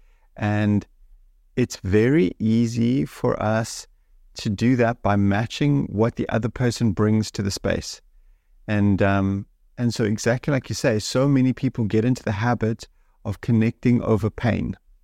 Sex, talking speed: male, 150 wpm